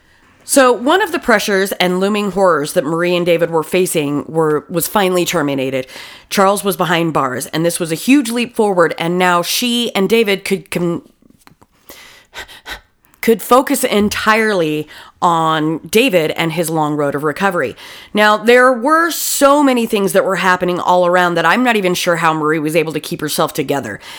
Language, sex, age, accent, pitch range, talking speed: English, female, 30-49, American, 165-215 Hz, 175 wpm